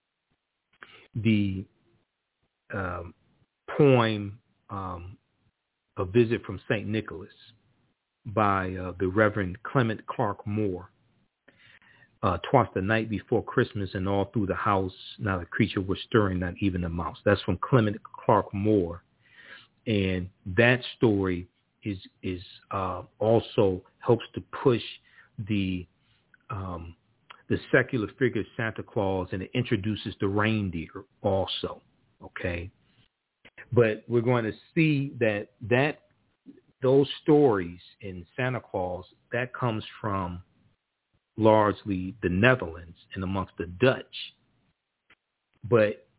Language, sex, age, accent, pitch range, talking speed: English, male, 40-59, American, 95-120 Hz, 115 wpm